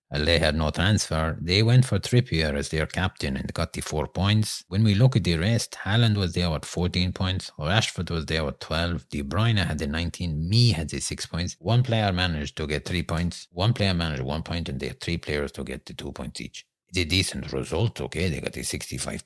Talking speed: 235 wpm